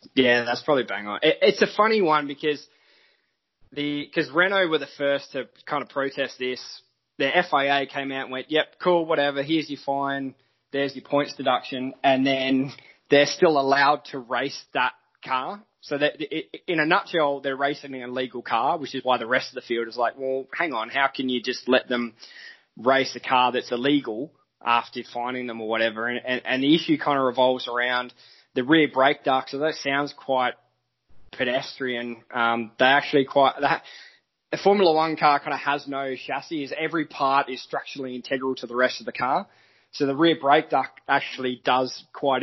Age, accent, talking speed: 20-39, Australian, 195 wpm